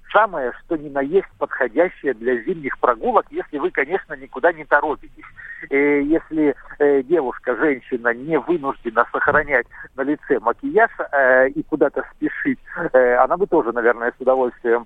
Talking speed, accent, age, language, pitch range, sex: 135 wpm, native, 50-69, Russian, 130-170 Hz, male